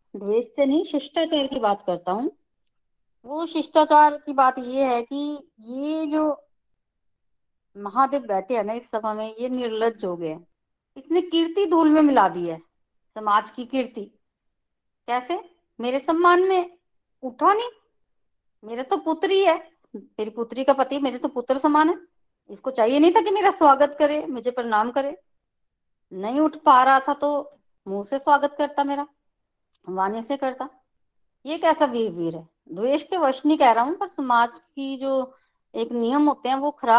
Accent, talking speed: native, 145 wpm